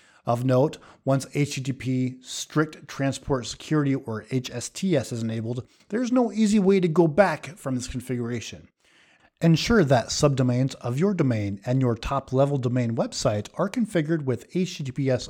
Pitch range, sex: 120-165 Hz, male